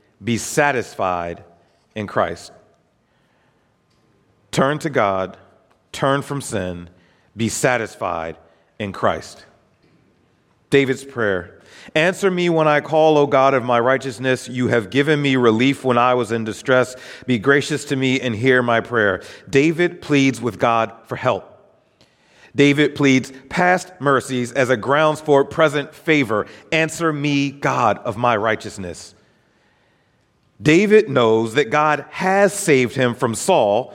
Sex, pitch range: male, 120-150 Hz